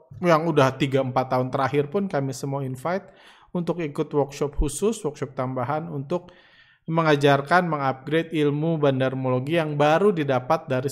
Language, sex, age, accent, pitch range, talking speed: Indonesian, male, 20-39, native, 135-170 Hz, 130 wpm